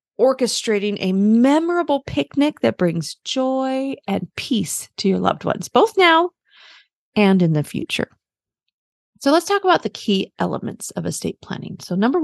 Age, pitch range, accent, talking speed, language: 30-49, 180-260 Hz, American, 150 wpm, English